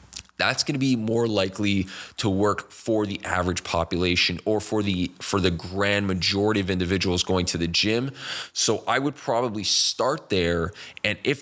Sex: male